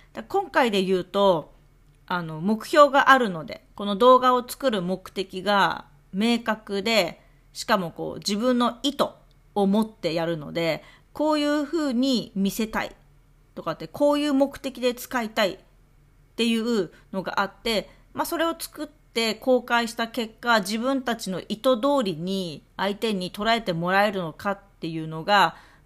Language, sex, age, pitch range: Japanese, female, 40-59, 175-255 Hz